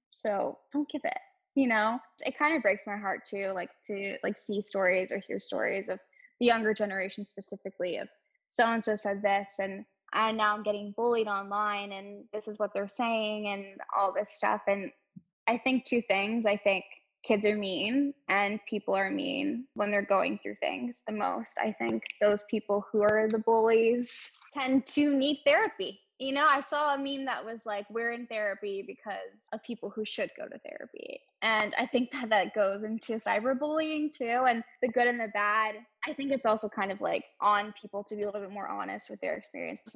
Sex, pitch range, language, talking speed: female, 205-260 Hz, English, 205 wpm